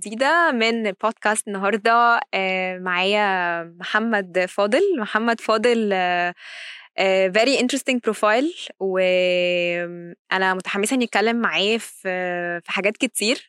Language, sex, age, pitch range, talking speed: Arabic, female, 20-39, 185-220 Hz, 85 wpm